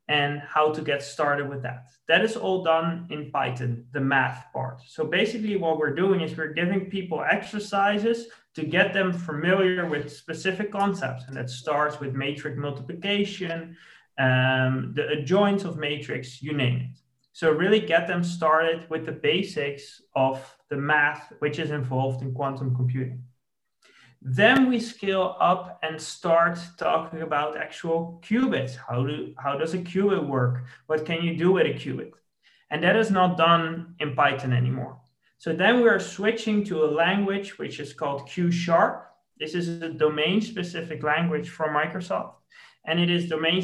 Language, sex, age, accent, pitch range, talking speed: English, male, 20-39, Dutch, 140-185 Hz, 165 wpm